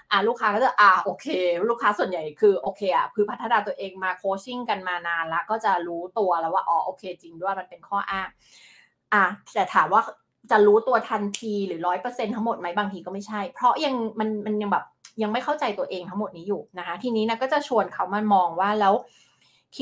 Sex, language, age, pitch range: female, Thai, 20-39, 185-230 Hz